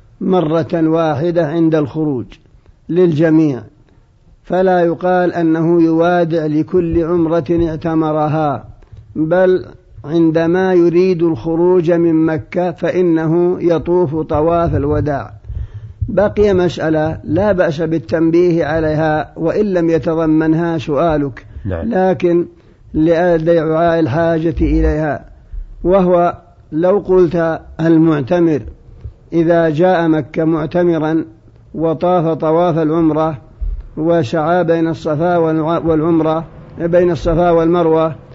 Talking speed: 85 wpm